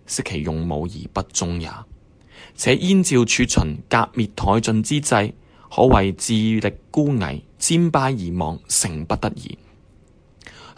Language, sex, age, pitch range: Chinese, male, 20-39, 90-125 Hz